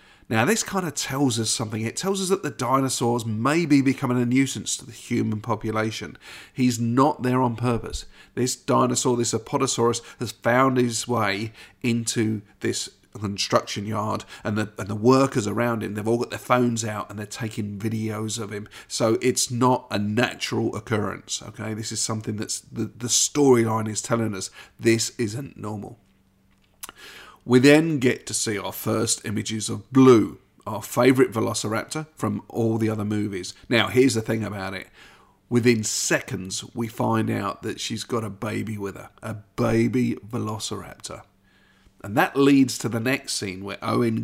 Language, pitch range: English, 110-125 Hz